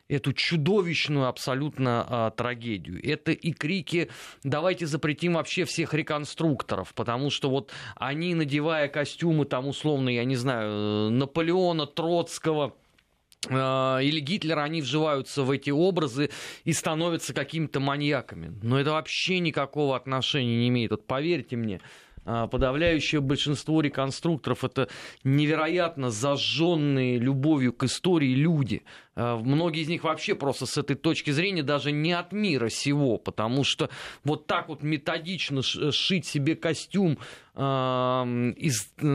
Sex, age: male, 30-49